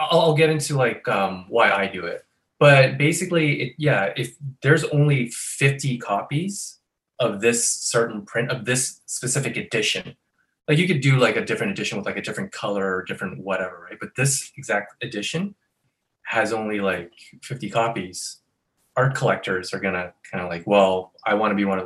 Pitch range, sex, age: 105-145 Hz, male, 20-39